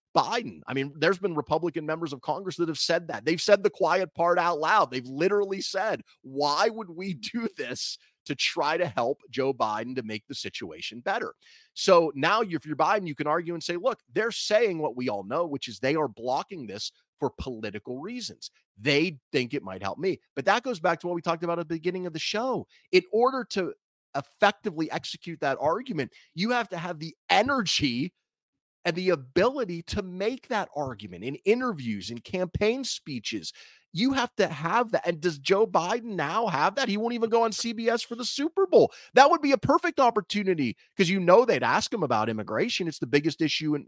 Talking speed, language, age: 210 wpm, English, 30-49